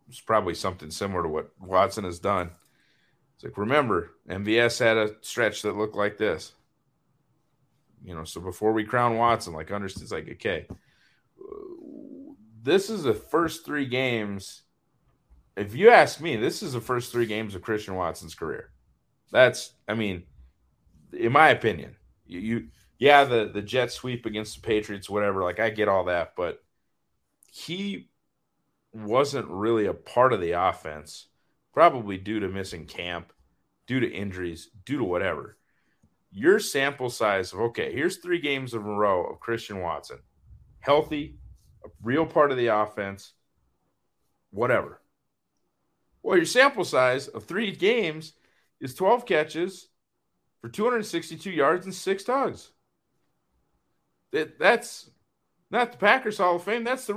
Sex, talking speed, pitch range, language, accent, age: male, 145 wpm, 100-160 Hz, English, American, 30-49